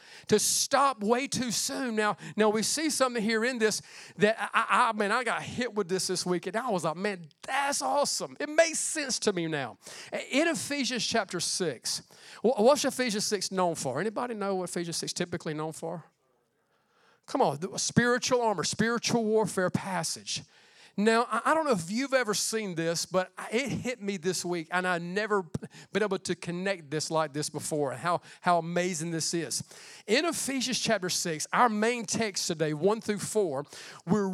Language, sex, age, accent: English, male, 40-59, American